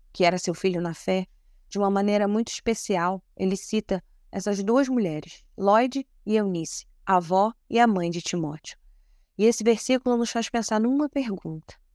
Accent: Brazilian